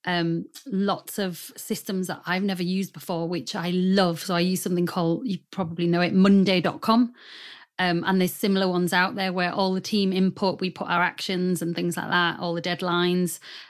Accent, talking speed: British, 195 wpm